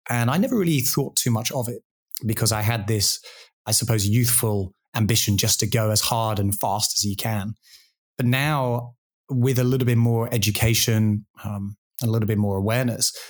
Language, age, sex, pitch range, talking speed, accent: English, 20-39, male, 110-125 Hz, 190 wpm, British